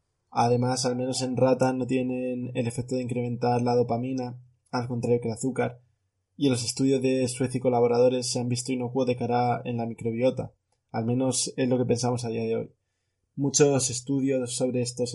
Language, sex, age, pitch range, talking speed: Spanish, male, 20-39, 120-130 Hz, 190 wpm